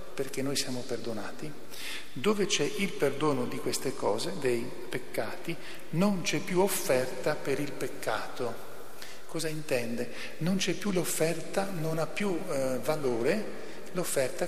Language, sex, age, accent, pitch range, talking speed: Italian, male, 40-59, native, 130-170 Hz, 135 wpm